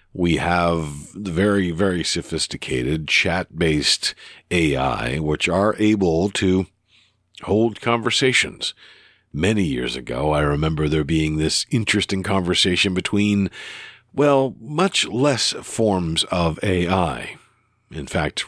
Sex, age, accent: male, 50-69, American